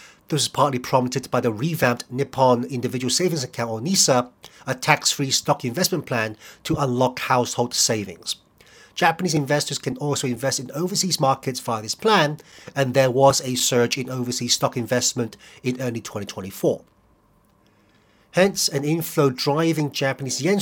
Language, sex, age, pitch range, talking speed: English, male, 40-59, 120-150 Hz, 150 wpm